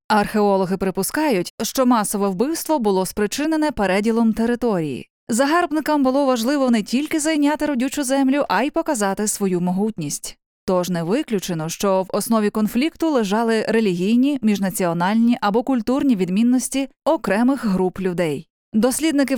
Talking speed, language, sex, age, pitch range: 120 wpm, Ukrainian, female, 20-39, 195-265 Hz